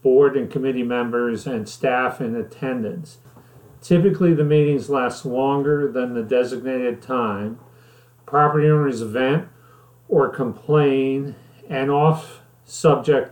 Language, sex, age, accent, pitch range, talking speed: English, male, 40-59, American, 120-145 Hz, 110 wpm